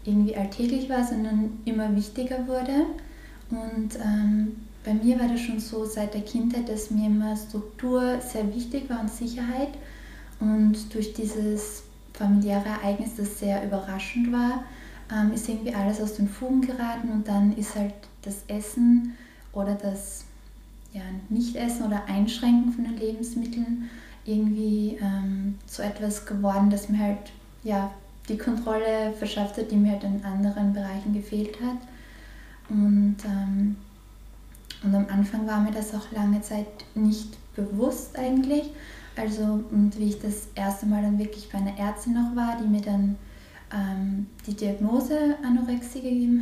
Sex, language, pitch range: female, German, 205-235 Hz